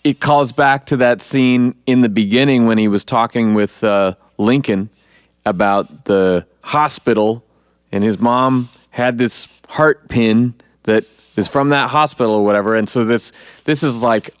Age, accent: 30-49, American